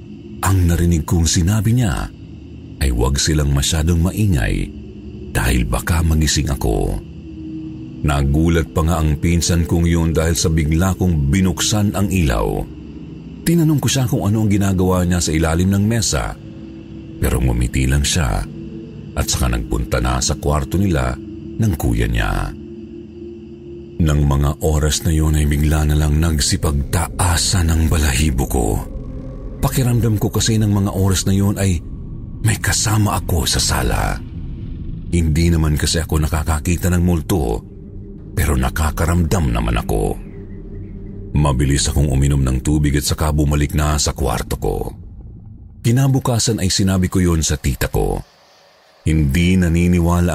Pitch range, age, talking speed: 75-100 Hz, 50-69, 135 wpm